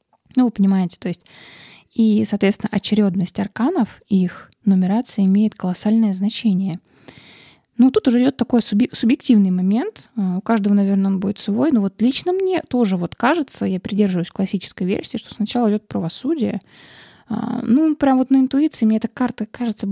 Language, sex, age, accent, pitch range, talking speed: Russian, female, 20-39, native, 195-240 Hz, 155 wpm